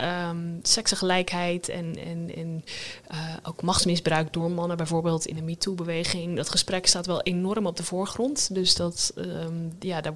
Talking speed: 165 wpm